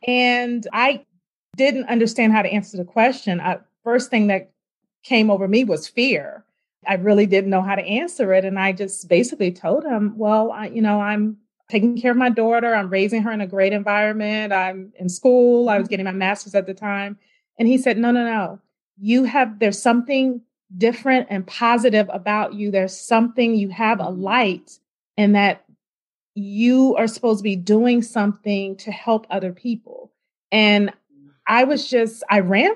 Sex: female